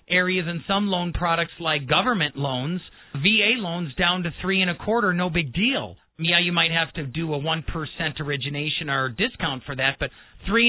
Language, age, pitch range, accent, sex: Japanese, 40-59, 155-195 Hz, American, male